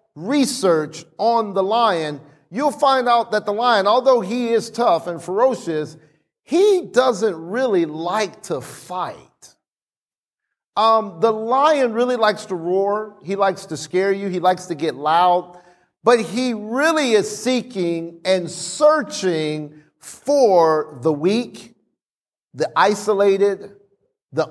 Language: English